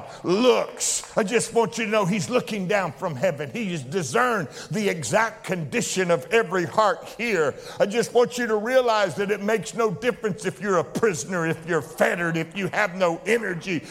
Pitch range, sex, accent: 190-250 Hz, male, American